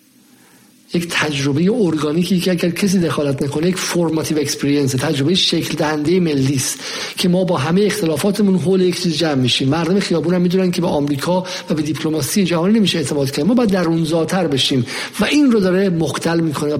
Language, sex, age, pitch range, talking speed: Persian, male, 50-69, 150-185 Hz, 160 wpm